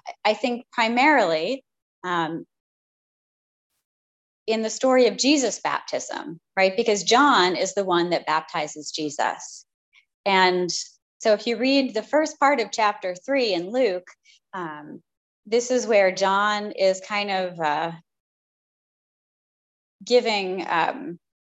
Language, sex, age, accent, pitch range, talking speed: English, female, 20-39, American, 170-225 Hz, 120 wpm